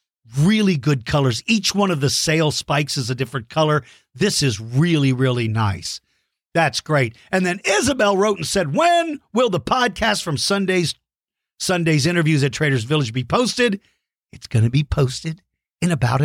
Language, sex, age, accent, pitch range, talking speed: English, male, 50-69, American, 125-190 Hz, 170 wpm